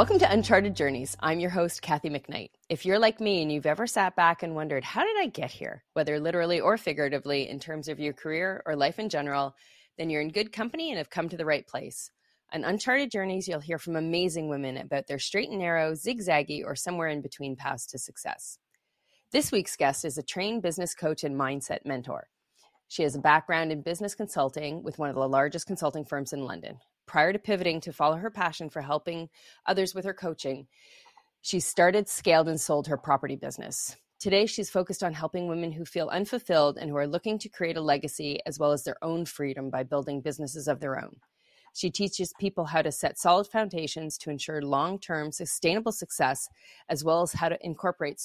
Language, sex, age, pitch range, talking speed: English, female, 30-49, 150-190 Hz, 210 wpm